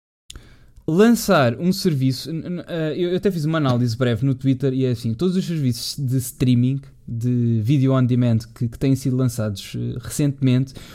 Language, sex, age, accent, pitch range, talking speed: Portuguese, male, 20-39, Portuguese, 120-155 Hz, 160 wpm